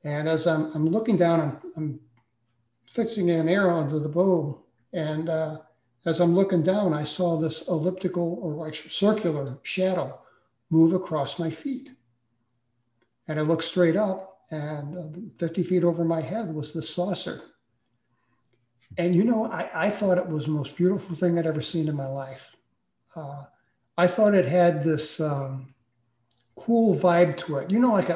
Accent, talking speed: American, 165 wpm